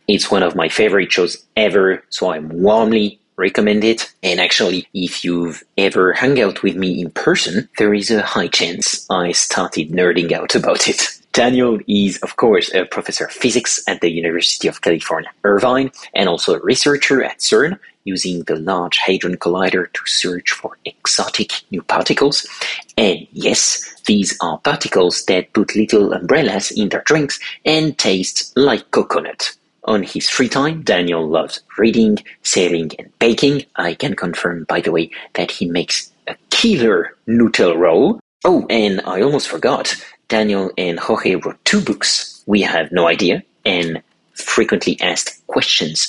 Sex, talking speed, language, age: male, 160 wpm, English, 30-49